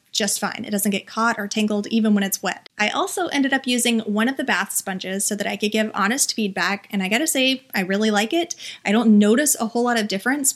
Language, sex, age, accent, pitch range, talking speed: English, female, 30-49, American, 205-250 Hz, 255 wpm